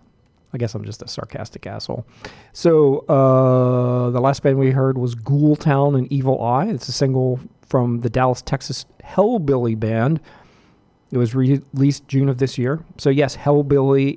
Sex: male